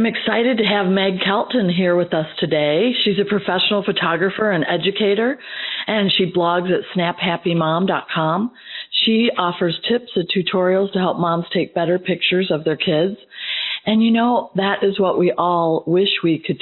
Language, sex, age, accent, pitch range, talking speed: English, female, 50-69, American, 160-195 Hz, 165 wpm